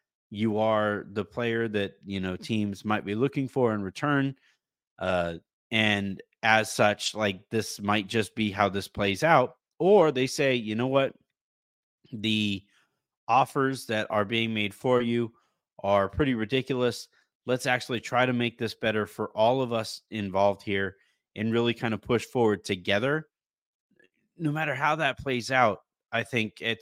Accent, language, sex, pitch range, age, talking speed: American, English, male, 105-130 Hz, 30-49, 165 wpm